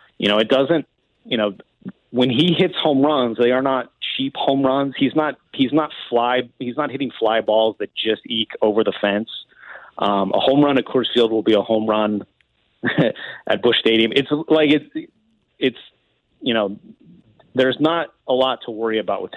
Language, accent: English, American